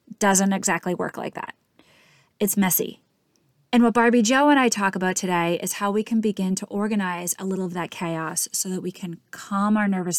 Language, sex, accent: English, female, American